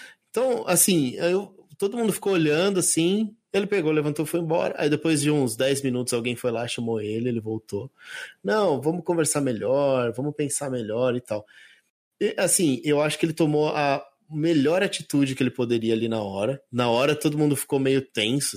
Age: 20-39